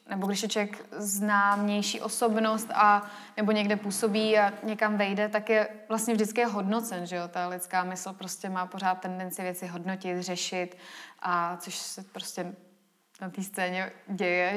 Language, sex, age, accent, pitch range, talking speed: Czech, female, 20-39, native, 190-220 Hz, 160 wpm